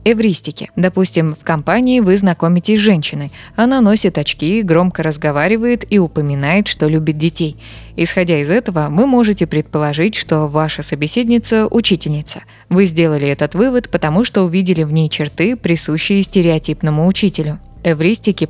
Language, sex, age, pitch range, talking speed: Russian, female, 20-39, 155-195 Hz, 140 wpm